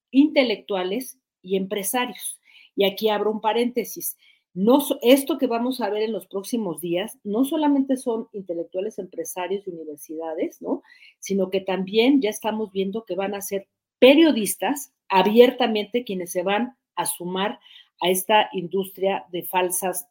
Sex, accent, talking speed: female, Mexican, 135 wpm